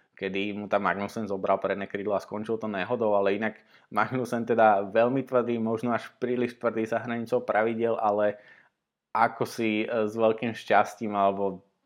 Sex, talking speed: male, 155 wpm